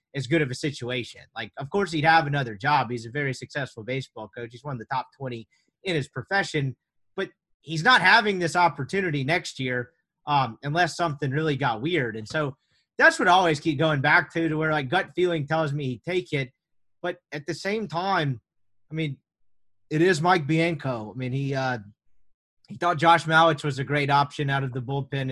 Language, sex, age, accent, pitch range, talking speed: English, male, 30-49, American, 135-175 Hz, 210 wpm